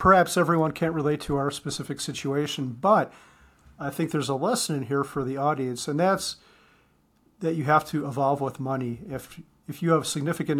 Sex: male